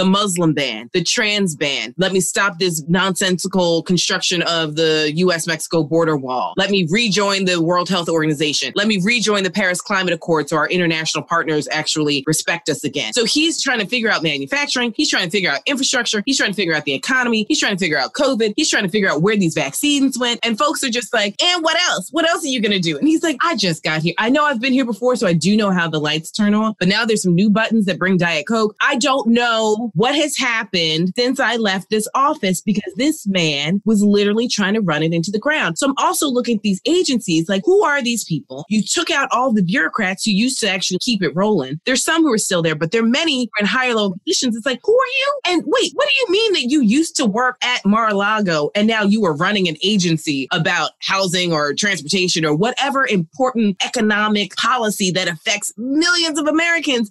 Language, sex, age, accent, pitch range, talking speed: English, female, 20-39, American, 180-260 Hz, 230 wpm